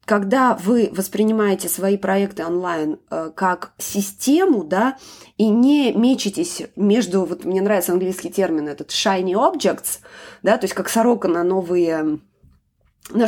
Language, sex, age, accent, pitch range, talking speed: Russian, female, 20-39, native, 175-240 Hz, 135 wpm